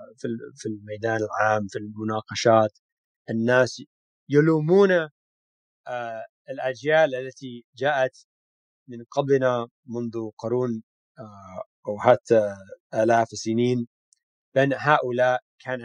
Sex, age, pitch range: male, 30-49, 110-150 Hz